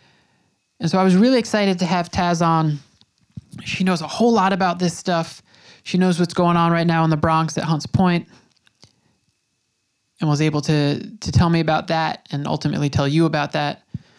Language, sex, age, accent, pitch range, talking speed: English, male, 20-39, American, 150-180 Hz, 195 wpm